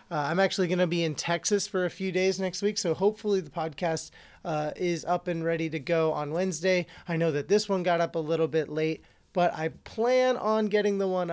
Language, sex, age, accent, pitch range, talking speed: English, male, 30-49, American, 155-185 Hz, 240 wpm